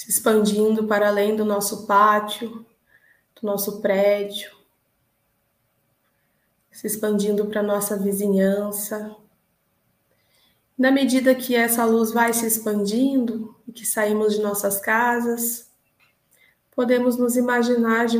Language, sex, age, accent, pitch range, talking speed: Portuguese, female, 20-39, Brazilian, 210-230 Hz, 110 wpm